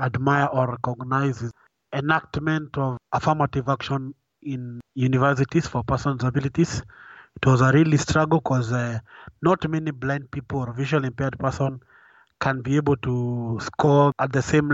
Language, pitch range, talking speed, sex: English, 125-145 Hz, 145 wpm, male